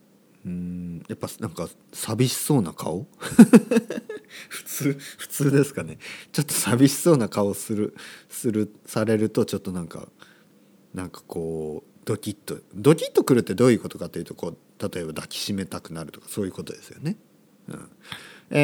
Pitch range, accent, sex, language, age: 95-140 Hz, native, male, Japanese, 40-59